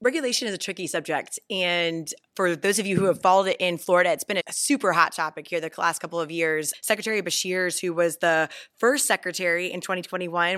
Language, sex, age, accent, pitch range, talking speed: English, female, 20-39, American, 165-185 Hz, 210 wpm